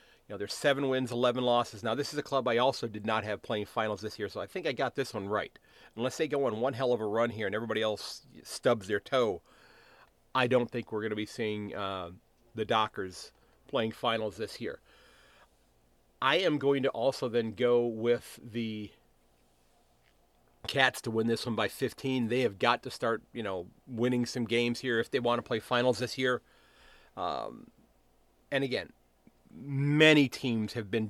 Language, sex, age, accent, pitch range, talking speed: English, male, 40-59, American, 105-130 Hz, 195 wpm